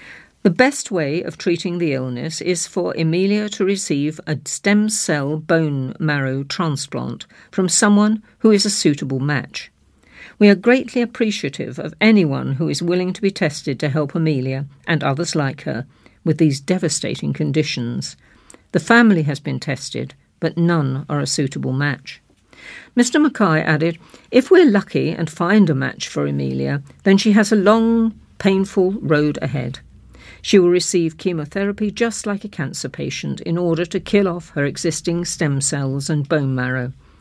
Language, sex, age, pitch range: English, female, 50-69, 145-195 Hz